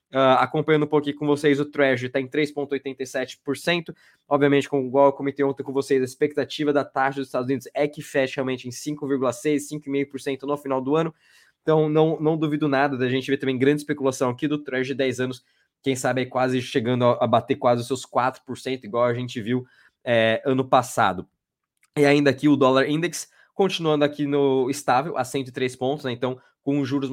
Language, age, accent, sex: Portuguese, 20-39, Brazilian, male